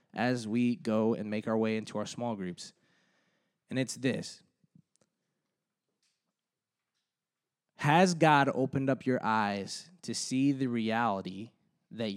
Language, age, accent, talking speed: English, 20-39, American, 125 wpm